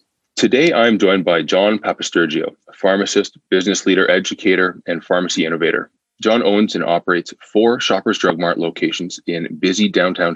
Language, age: English, 20-39